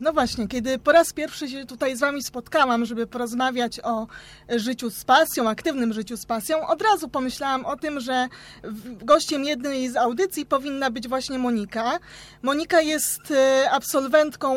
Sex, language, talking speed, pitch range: female, Polish, 155 wpm, 245-310 Hz